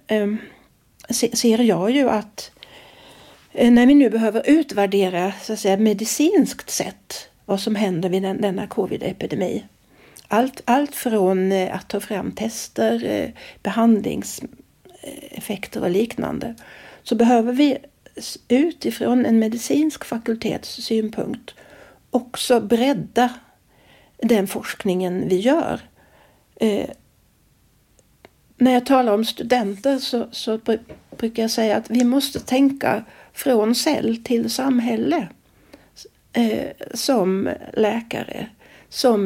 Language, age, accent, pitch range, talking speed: Swedish, 60-79, native, 215-255 Hz, 100 wpm